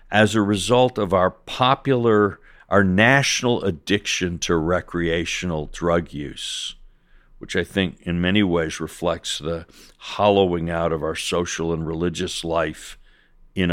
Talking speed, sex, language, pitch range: 130 wpm, male, English, 85-100 Hz